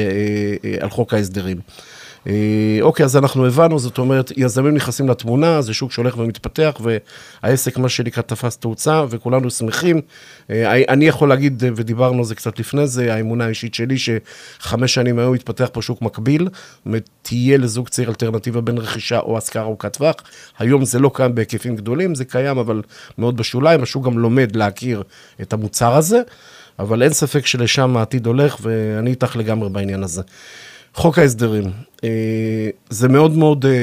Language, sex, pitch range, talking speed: Hebrew, male, 110-135 Hz, 155 wpm